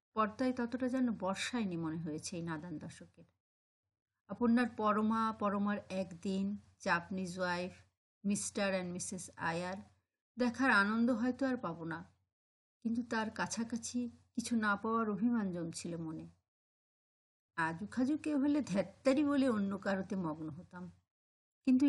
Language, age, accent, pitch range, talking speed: Bengali, 50-69, native, 175-240 Hz, 120 wpm